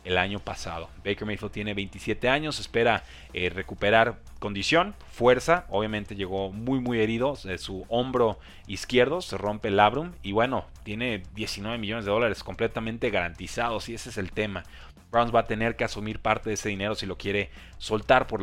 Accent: Mexican